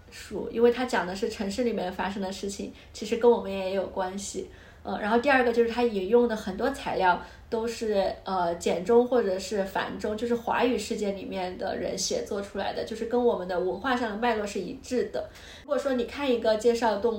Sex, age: female, 20-39